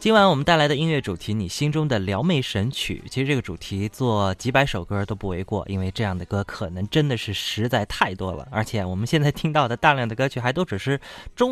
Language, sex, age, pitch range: Chinese, male, 20-39, 100-130 Hz